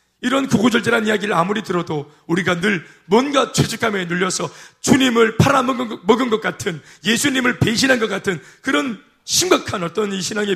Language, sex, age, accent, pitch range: Korean, male, 30-49, native, 185-235 Hz